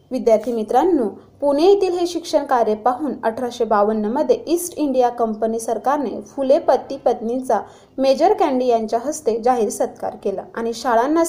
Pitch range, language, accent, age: 220-275 Hz, Marathi, native, 20-39